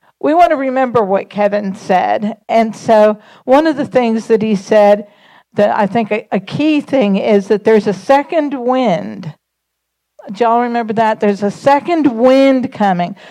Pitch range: 210-265 Hz